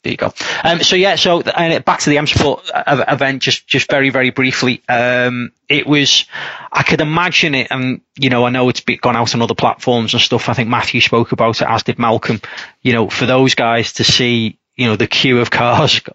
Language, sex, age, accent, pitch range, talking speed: English, male, 30-49, British, 110-130 Hz, 225 wpm